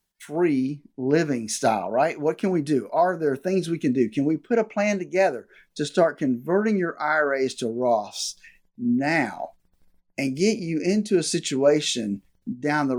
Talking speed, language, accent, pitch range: 165 wpm, English, American, 125-185 Hz